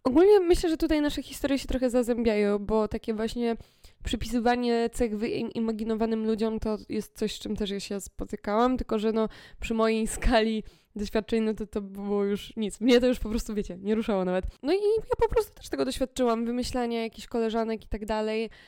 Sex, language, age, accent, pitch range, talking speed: female, Polish, 20-39, native, 200-230 Hz, 195 wpm